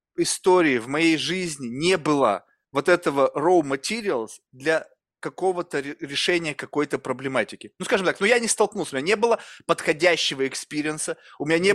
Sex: male